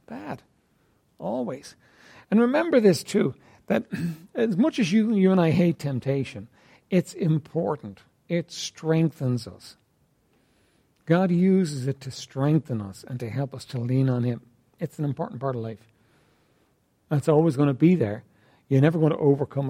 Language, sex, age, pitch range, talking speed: English, male, 60-79, 125-175 Hz, 160 wpm